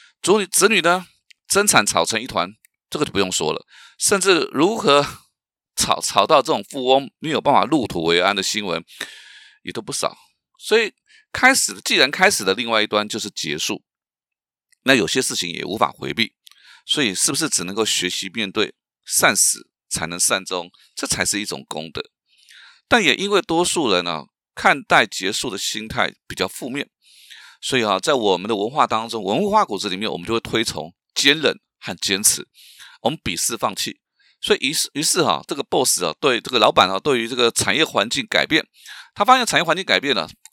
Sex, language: male, Chinese